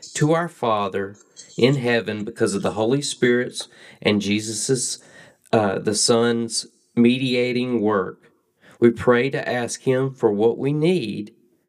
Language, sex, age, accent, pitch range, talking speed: English, male, 30-49, American, 105-130 Hz, 135 wpm